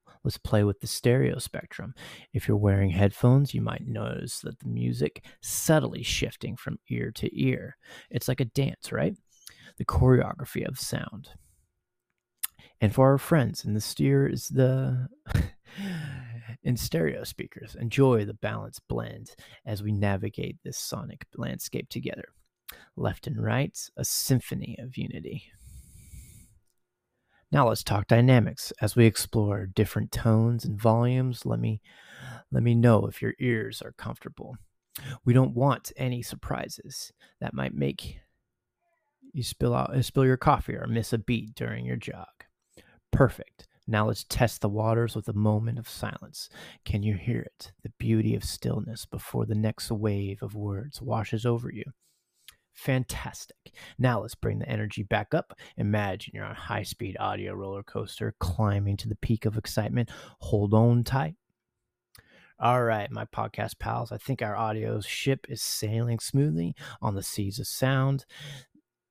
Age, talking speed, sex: 30-49, 150 wpm, male